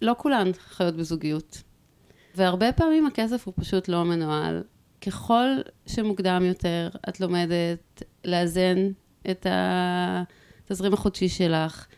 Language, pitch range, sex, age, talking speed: Hebrew, 170-205 Hz, female, 30-49, 105 wpm